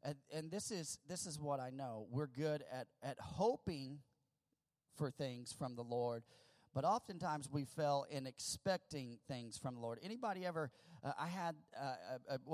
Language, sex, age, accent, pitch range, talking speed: English, male, 40-59, American, 140-185 Hz, 165 wpm